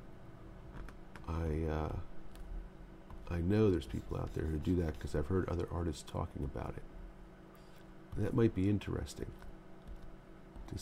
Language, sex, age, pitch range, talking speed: English, male, 50-69, 70-95 Hz, 140 wpm